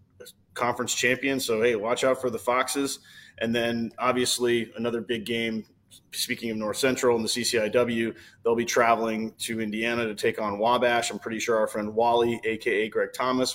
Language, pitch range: English, 110-130 Hz